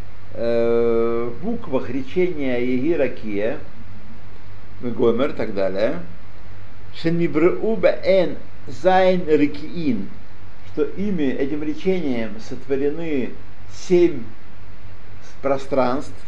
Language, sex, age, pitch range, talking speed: Russian, male, 60-79, 100-165 Hz, 65 wpm